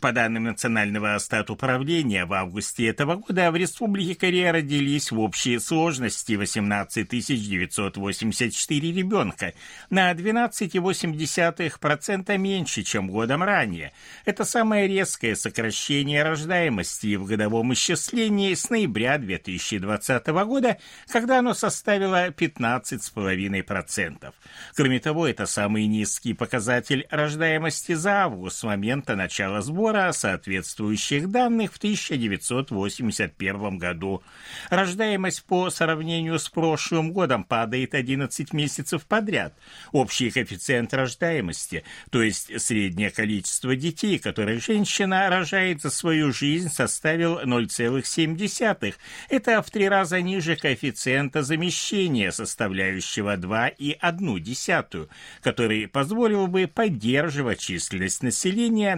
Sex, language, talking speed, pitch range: male, Russian, 100 wpm, 110-185 Hz